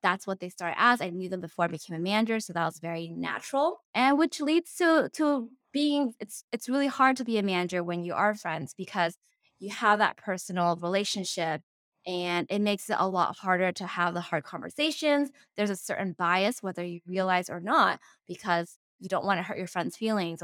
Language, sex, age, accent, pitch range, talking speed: English, female, 10-29, American, 180-225 Hz, 210 wpm